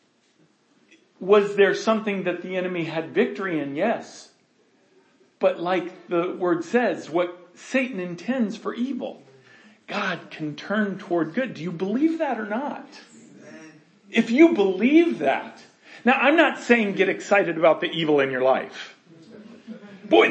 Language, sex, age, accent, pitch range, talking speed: English, male, 40-59, American, 200-280 Hz, 140 wpm